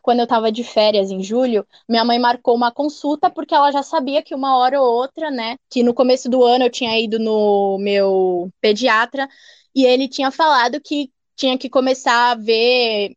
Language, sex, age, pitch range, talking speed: Portuguese, female, 10-29, 235-290 Hz, 195 wpm